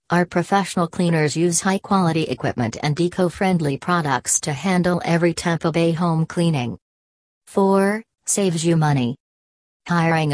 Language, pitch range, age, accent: English, 150-180 Hz, 40-59, American